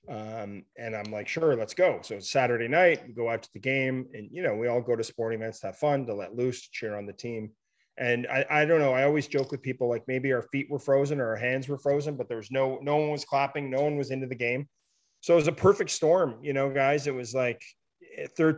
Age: 30-49